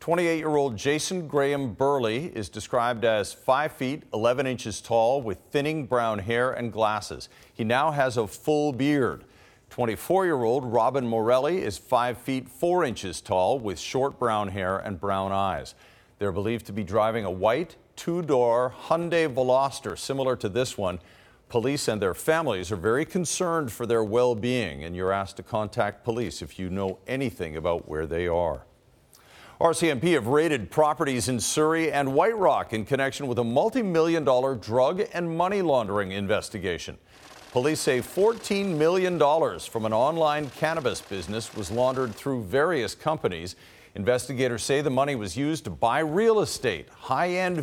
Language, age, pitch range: English, 50-69, 110-155 Hz